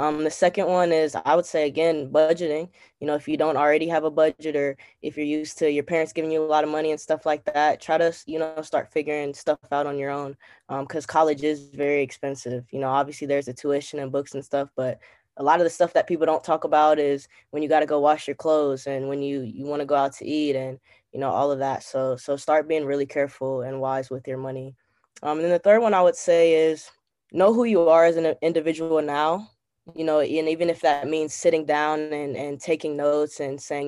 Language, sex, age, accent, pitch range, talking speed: English, female, 10-29, American, 140-160 Hz, 255 wpm